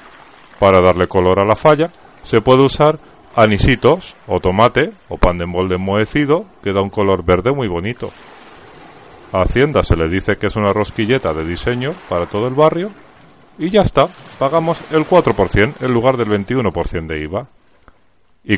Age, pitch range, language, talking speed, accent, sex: 40-59, 90-120 Hz, Spanish, 170 wpm, Spanish, male